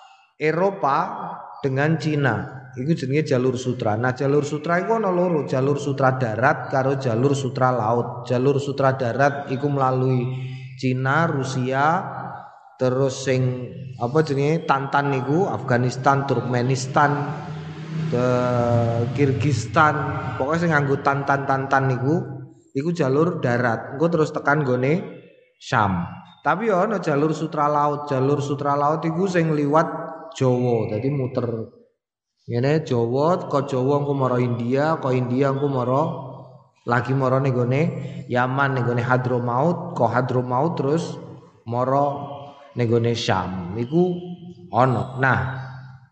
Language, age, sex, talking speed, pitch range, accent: Indonesian, 20-39, male, 115 wpm, 125-155 Hz, native